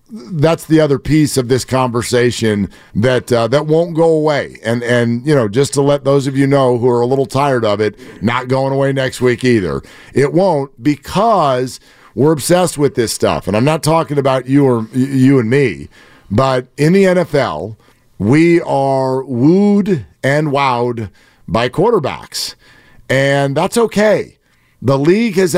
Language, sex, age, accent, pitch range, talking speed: English, male, 50-69, American, 125-170 Hz, 170 wpm